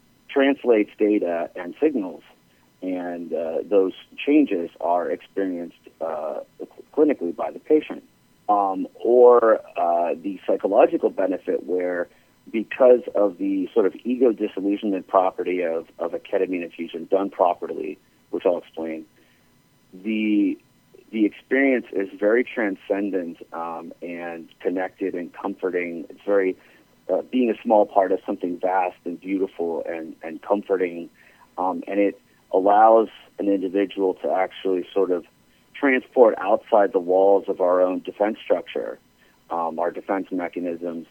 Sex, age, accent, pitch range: male, 40-59, American, 90-105 Hz